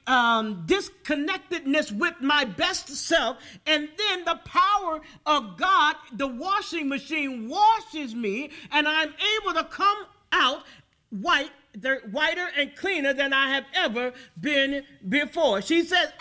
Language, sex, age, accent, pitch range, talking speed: English, male, 40-59, American, 260-325 Hz, 135 wpm